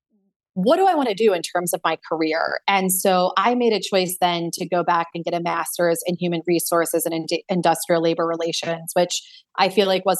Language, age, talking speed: English, 30-49, 225 wpm